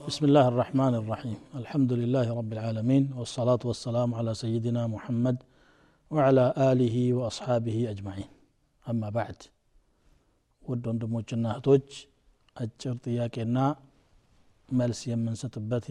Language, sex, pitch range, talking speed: Amharic, male, 120-145 Hz, 95 wpm